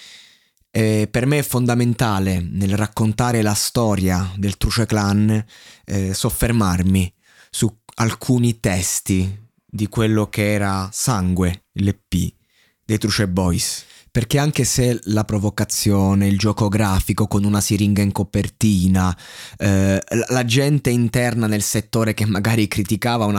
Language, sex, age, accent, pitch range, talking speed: Italian, male, 20-39, native, 100-110 Hz, 125 wpm